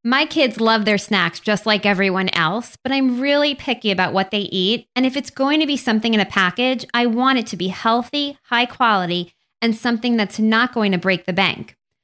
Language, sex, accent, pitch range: English, female, American, 200-260 Hz